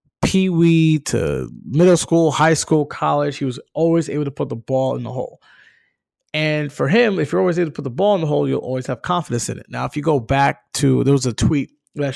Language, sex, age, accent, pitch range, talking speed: English, male, 20-39, American, 135-175 Hz, 240 wpm